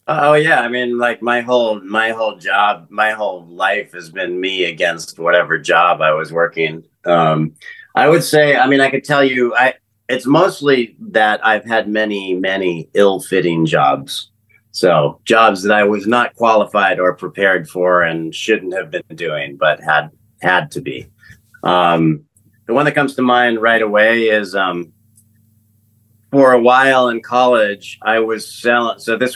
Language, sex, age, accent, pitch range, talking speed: English, male, 40-59, American, 100-120 Hz, 170 wpm